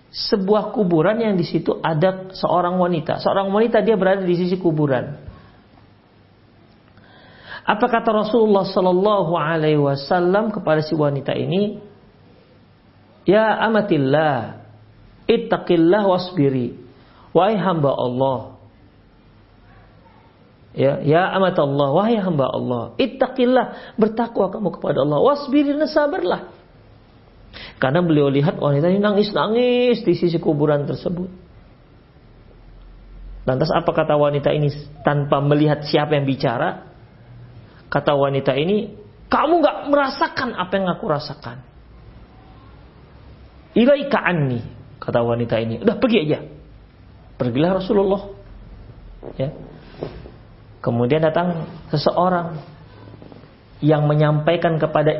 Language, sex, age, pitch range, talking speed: Indonesian, male, 50-69, 125-195 Hz, 100 wpm